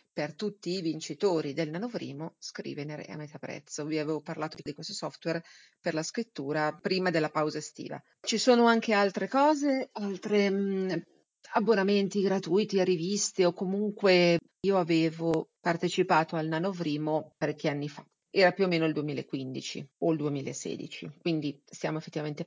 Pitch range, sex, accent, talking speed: 150-190 Hz, female, native, 145 wpm